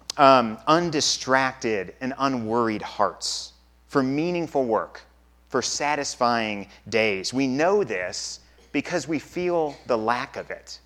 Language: English